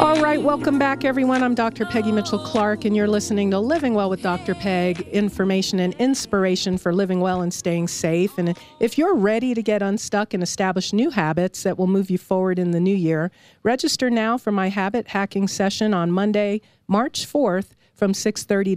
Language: English